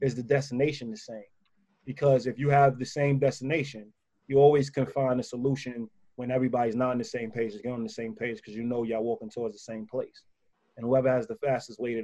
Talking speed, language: 235 wpm, English